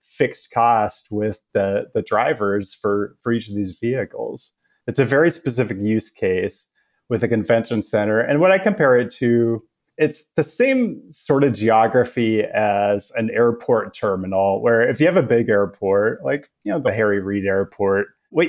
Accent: American